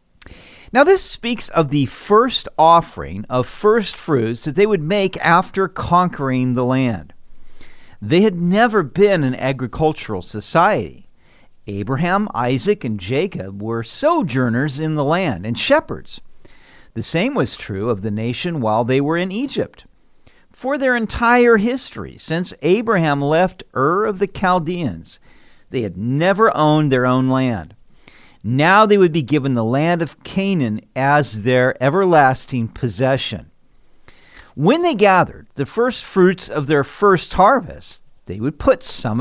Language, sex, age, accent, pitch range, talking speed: English, male, 50-69, American, 125-185 Hz, 140 wpm